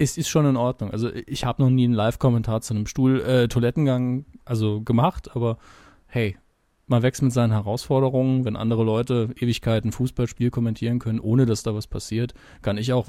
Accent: German